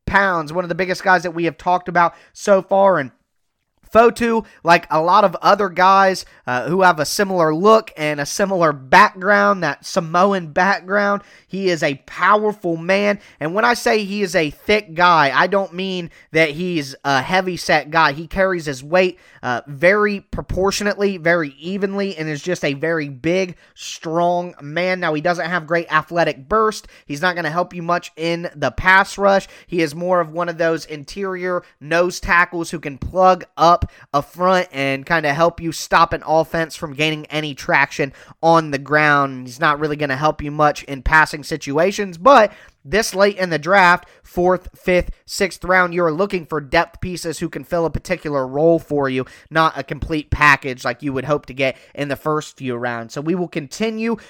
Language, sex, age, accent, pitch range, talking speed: English, male, 20-39, American, 155-190 Hz, 195 wpm